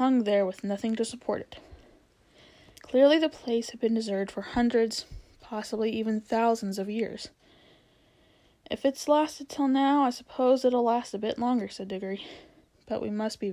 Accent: American